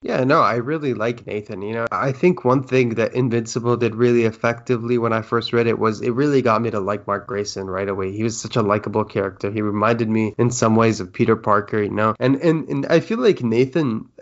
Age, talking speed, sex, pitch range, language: 20-39, 240 wpm, male, 110-125 Hz, English